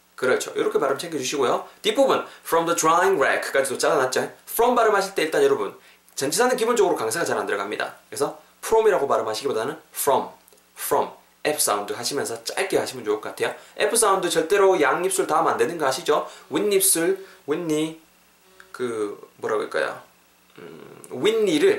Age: 20-39